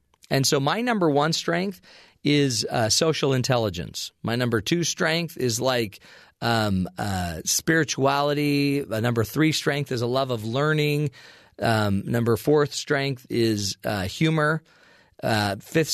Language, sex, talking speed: English, male, 140 wpm